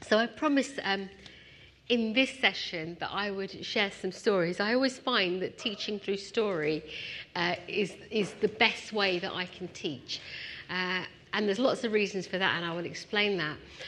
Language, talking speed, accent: English, 185 wpm, British